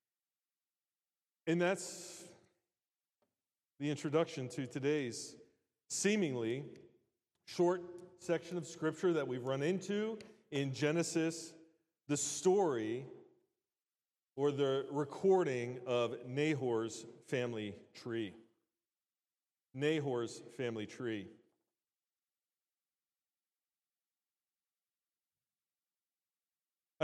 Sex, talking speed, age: male, 65 wpm, 40-59